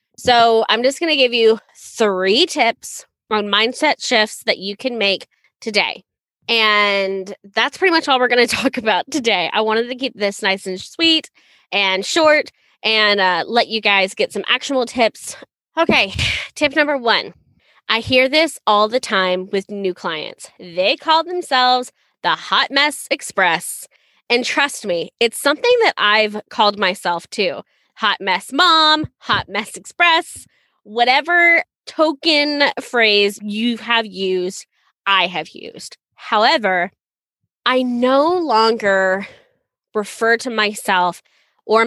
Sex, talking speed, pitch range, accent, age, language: female, 145 wpm, 205-275 Hz, American, 20-39, English